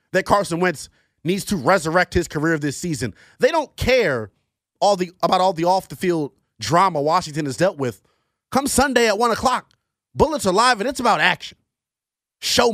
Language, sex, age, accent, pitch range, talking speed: English, male, 30-49, American, 130-205 Hz, 170 wpm